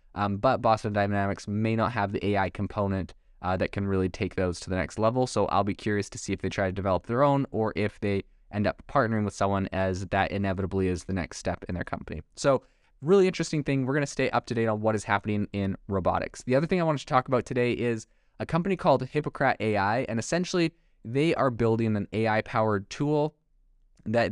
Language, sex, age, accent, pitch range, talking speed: English, male, 20-39, American, 100-125 Hz, 230 wpm